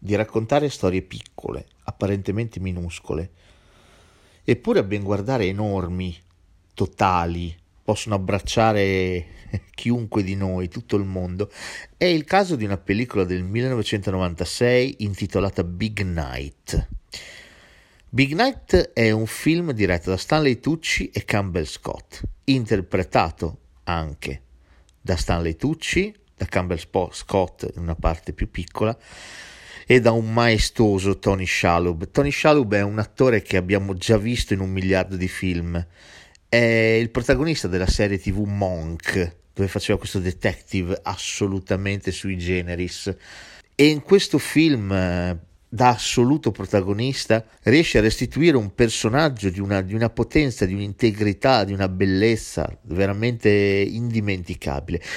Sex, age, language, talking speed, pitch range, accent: male, 40-59, Italian, 125 wpm, 90-115 Hz, native